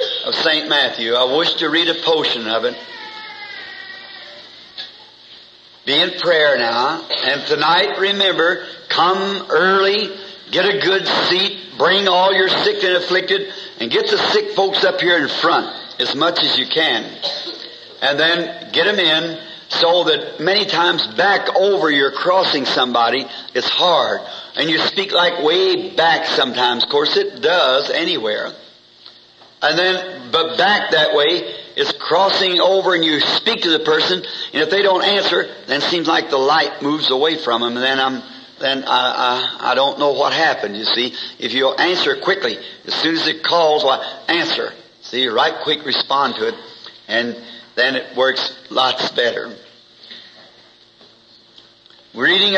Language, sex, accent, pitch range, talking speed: English, male, American, 150-205 Hz, 160 wpm